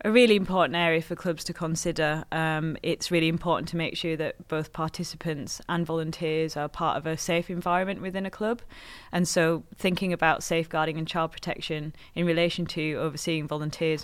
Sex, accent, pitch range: female, British, 160-185 Hz